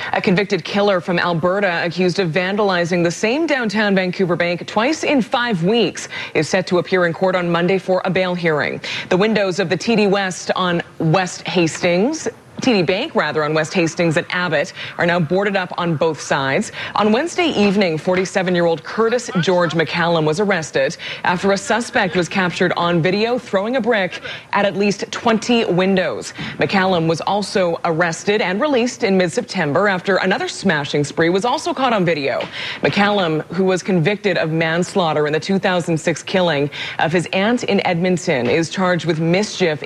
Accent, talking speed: American, 170 wpm